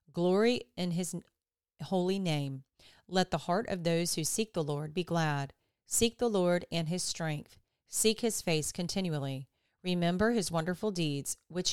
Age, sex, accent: 40-59, female, American